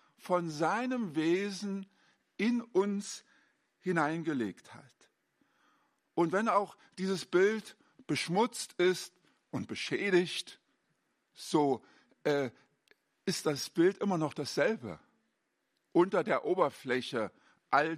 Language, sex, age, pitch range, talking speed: German, male, 50-69, 140-200 Hz, 95 wpm